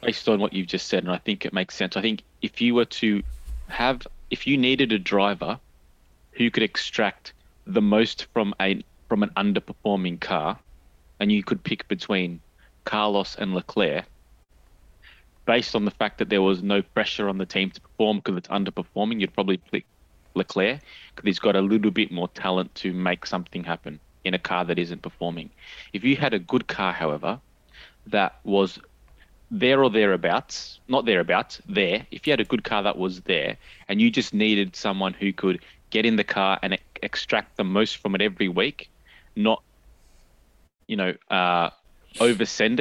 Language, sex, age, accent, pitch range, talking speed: English, male, 20-39, Australian, 85-105 Hz, 180 wpm